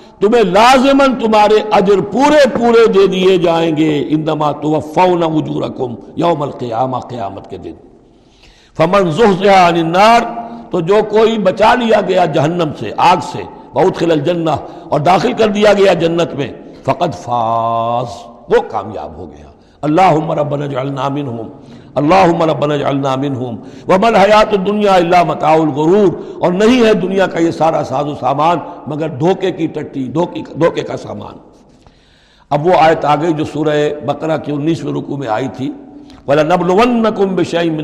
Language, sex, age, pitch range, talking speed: Urdu, male, 60-79, 145-195 Hz, 145 wpm